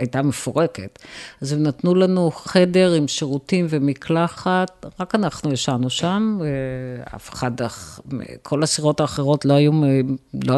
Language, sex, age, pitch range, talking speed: Hebrew, female, 50-69, 135-180 Hz, 130 wpm